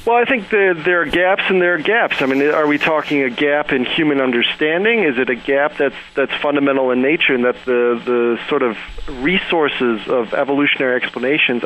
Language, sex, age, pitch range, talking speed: English, male, 40-59, 130-165 Hz, 200 wpm